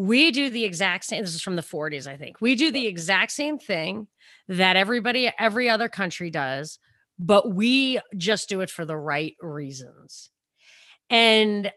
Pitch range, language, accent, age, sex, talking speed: 175-215 Hz, English, American, 30-49, female, 175 wpm